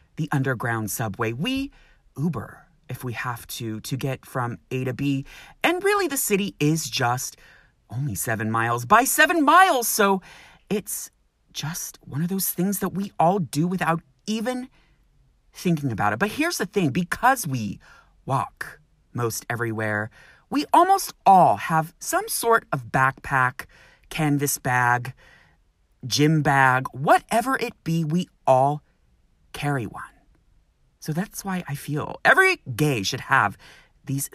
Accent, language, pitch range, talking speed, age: American, English, 120-180 Hz, 140 wpm, 30-49